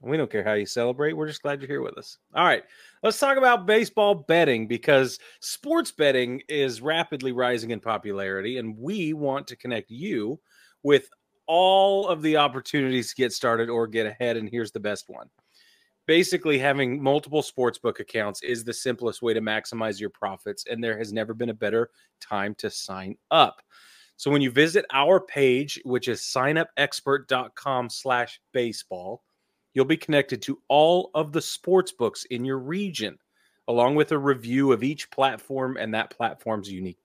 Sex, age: male, 30-49